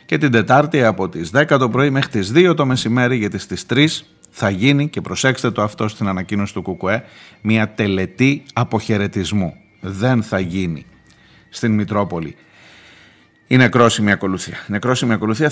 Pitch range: 105-135 Hz